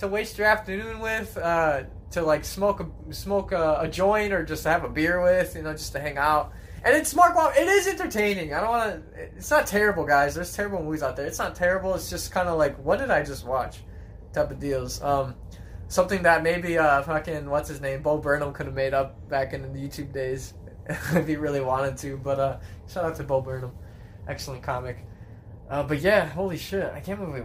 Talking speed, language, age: 230 wpm, English, 20-39